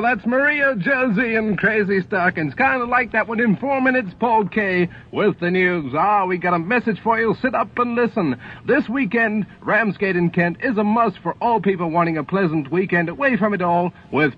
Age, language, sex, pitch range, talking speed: 50-69, English, male, 175-230 Hz, 215 wpm